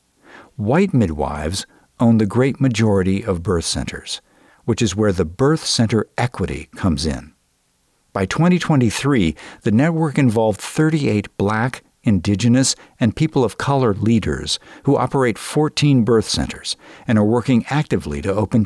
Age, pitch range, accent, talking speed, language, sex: 50-69, 95-125 Hz, American, 135 wpm, English, male